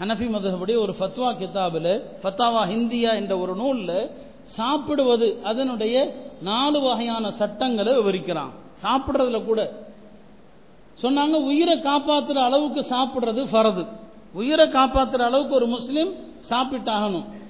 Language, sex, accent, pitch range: Tamil, male, native, 220-275 Hz